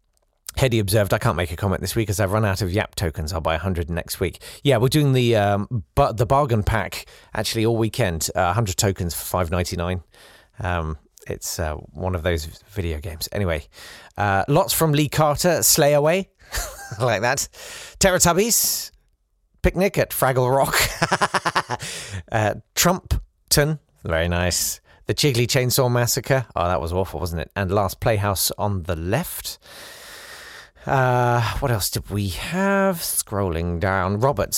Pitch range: 95-135 Hz